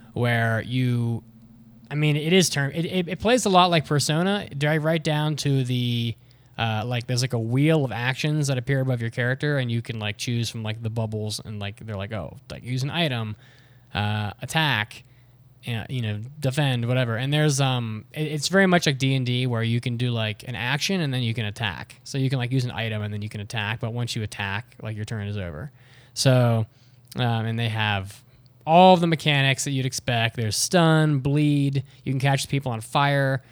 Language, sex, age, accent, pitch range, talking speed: English, male, 20-39, American, 115-145 Hz, 220 wpm